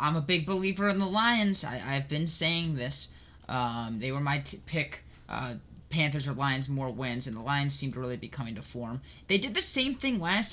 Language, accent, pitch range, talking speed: English, American, 120-160 Hz, 215 wpm